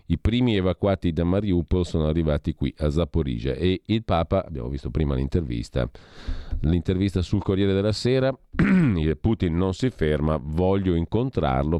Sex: male